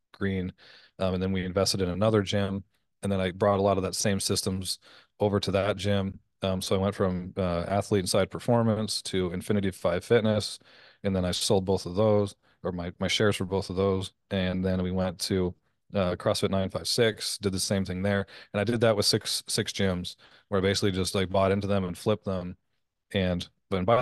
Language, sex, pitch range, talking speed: English, male, 95-100 Hz, 215 wpm